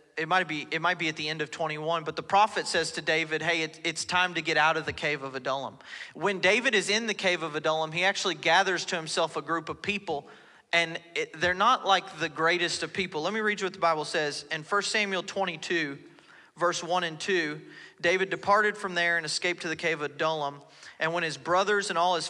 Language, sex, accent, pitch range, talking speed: English, male, American, 155-190 Hz, 230 wpm